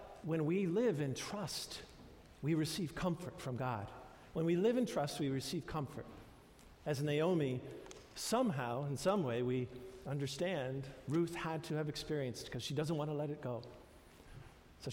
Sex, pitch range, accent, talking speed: male, 125-165 Hz, American, 160 wpm